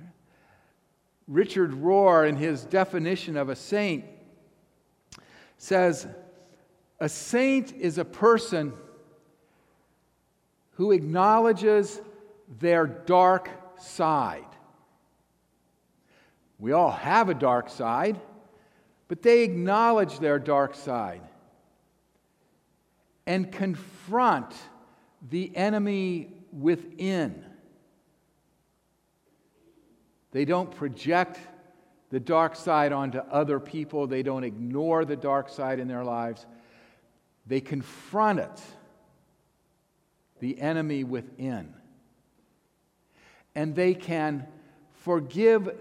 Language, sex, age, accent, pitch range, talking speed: English, male, 50-69, American, 140-185 Hz, 85 wpm